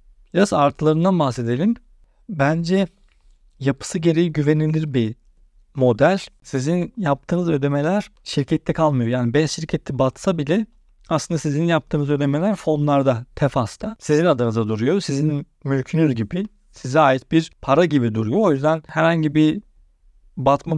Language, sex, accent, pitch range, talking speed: Turkish, male, native, 125-165 Hz, 120 wpm